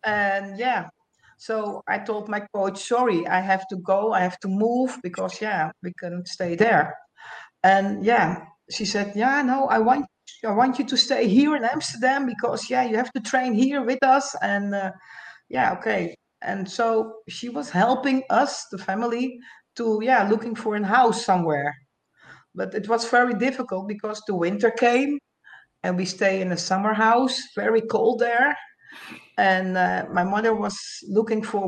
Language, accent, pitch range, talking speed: English, Dutch, 185-235 Hz, 175 wpm